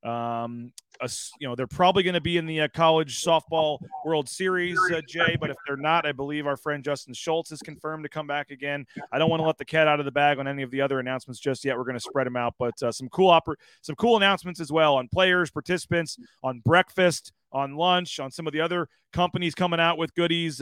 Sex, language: male, English